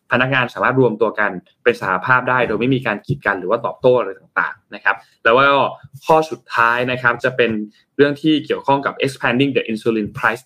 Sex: male